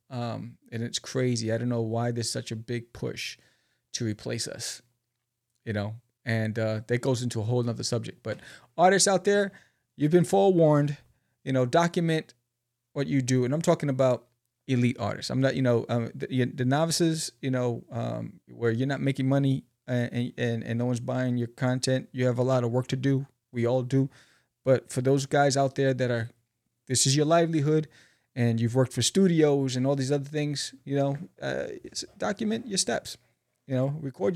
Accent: American